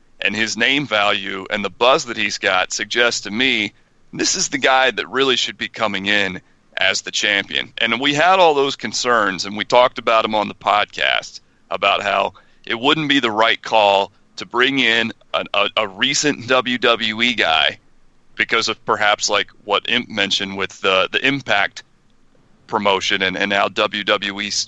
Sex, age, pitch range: male, 40-59, 100-125 Hz